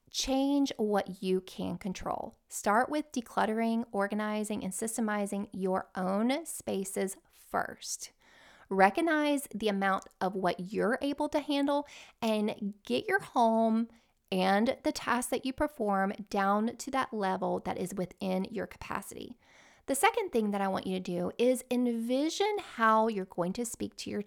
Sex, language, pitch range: female, English, 195-250 Hz